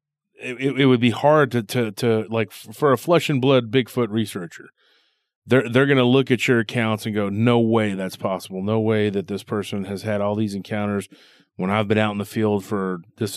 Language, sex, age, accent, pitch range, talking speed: English, male, 30-49, American, 100-125 Hz, 225 wpm